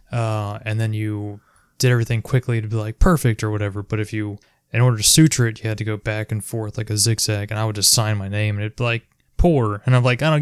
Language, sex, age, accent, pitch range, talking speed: English, male, 20-39, American, 110-130 Hz, 275 wpm